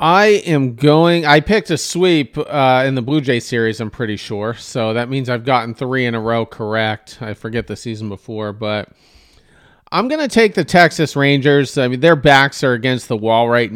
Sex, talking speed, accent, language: male, 210 wpm, American, English